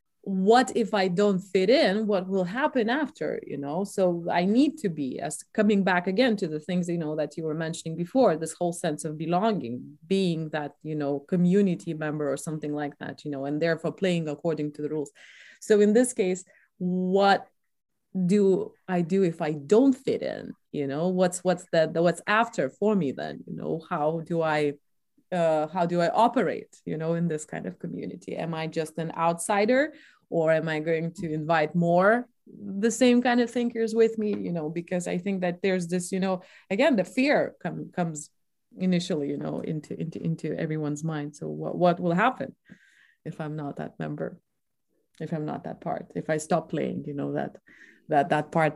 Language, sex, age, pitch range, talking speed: English, female, 20-39, 155-200 Hz, 200 wpm